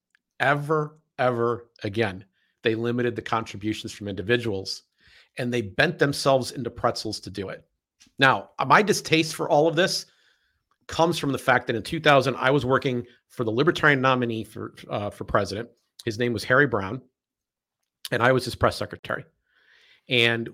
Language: English